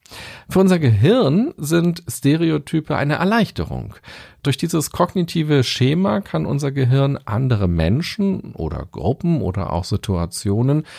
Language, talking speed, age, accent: German, 115 wpm, 40-59, German